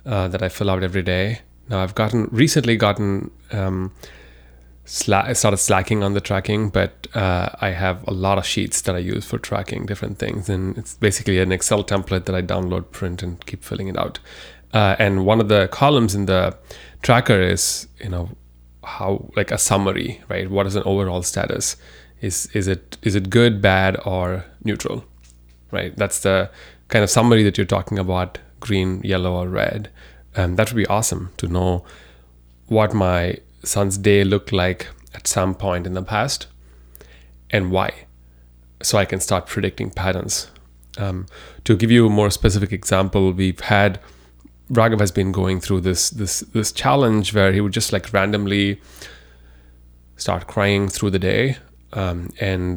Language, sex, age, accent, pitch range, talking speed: English, male, 20-39, Indian, 90-105 Hz, 175 wpm